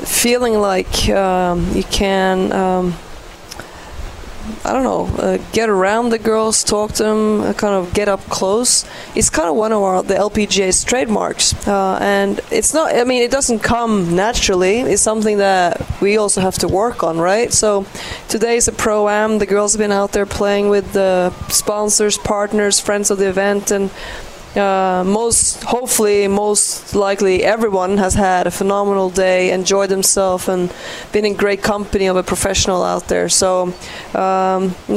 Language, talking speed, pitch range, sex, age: English, 165 wpm, 190-215 Hz, female, 20-39